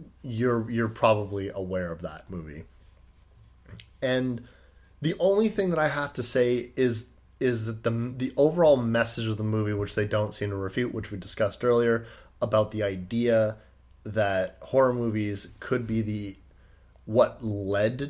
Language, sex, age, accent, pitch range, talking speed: English, male, 30-49, American, 100-125 Hz, 155 wpm